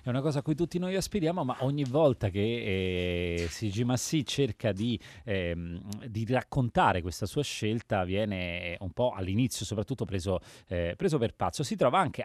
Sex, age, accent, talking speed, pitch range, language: male, 30-49, native, 175 wpm, 95-135 Hz, Italian